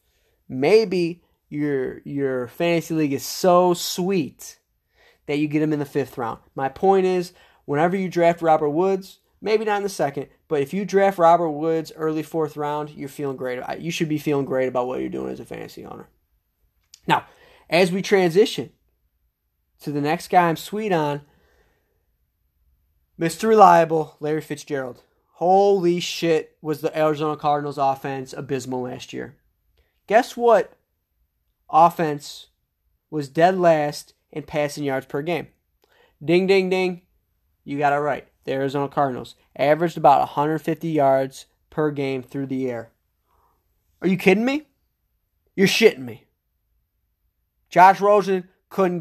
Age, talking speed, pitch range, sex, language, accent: 20-39, 145 wpm, 130-175 Hz, male, English, American